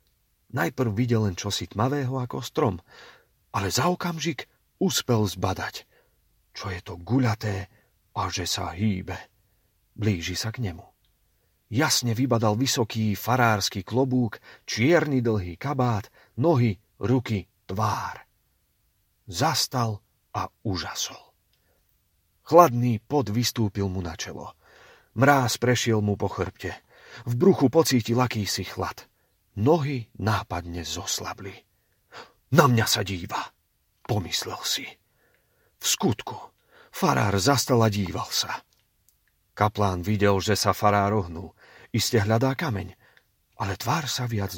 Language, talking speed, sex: Slovak, 110 wpm, male